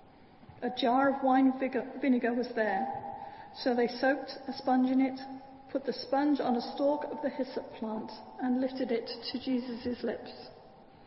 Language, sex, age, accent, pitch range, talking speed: English, female, 40-59, British, 245-275 Hz, 165 wpm